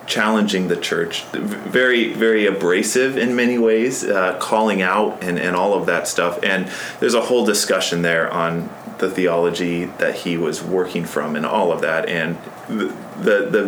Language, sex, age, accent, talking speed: English, male, 30-49, American, 175 wpm